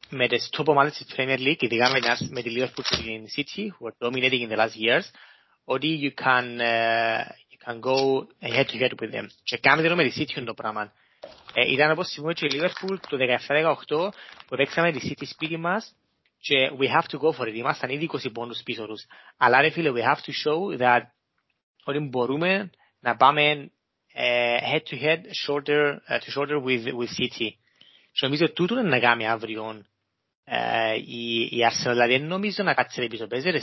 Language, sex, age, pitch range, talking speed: Greek, male, 30-49, 120-155 Hz, 80 wpm